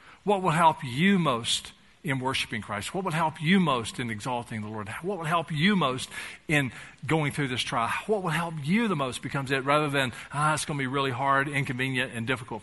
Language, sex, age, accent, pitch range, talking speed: English, male, 50-69, American, 115-165 Hz, 225 wpm